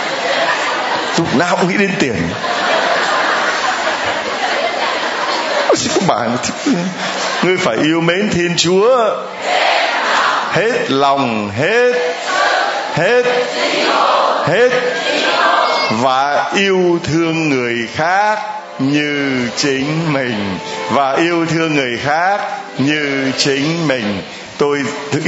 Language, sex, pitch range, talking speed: Vietnamese, male, 135-175 Hz, 80 wpm